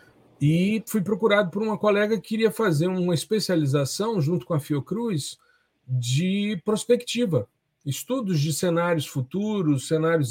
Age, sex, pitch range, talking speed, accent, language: 40-59, male, 135-200 Hz, 130 wpm, Brazilian, Portuguese